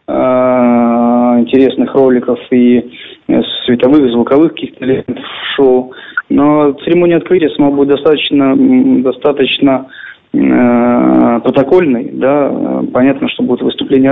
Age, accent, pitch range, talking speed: 20-39, native, 120-145 Hz, 90 wpm